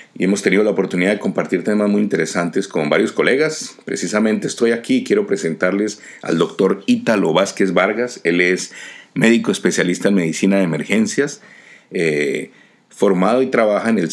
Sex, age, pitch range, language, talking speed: male, 50-69, 90-115 Hz, Spanish, 160 wpm